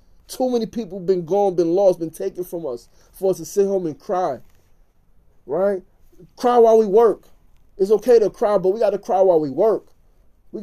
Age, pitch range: 30-49, 160-195 Hz